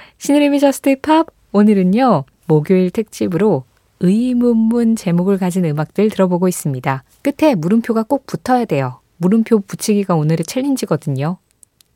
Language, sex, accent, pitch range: Korean, female, native, 165-235 Hz